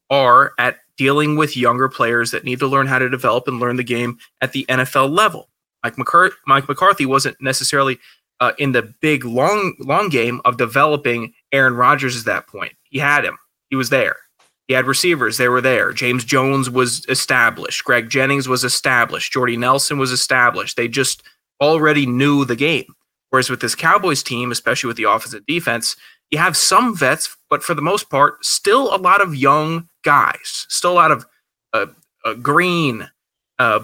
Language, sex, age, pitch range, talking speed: English, male, 20-39, 125-145 Hz, 185 wpm